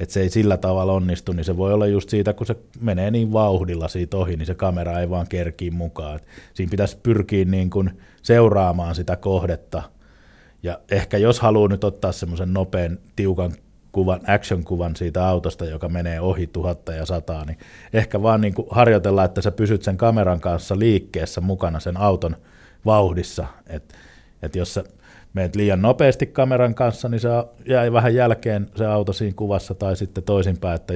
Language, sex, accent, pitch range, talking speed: Finnish, male, native, 90-105 Hz, 175 wpm